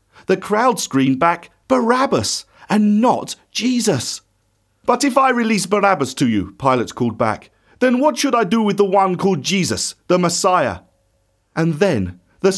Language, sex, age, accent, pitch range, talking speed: English, male, 40-59, British, 160-235 Hz, 155 wpm